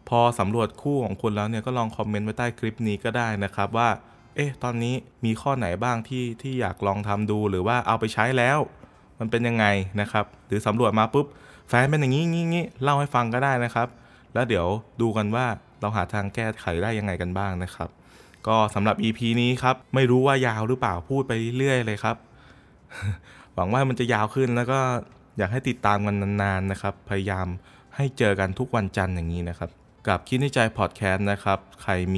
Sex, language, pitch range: male, Thai, 100-125 Hz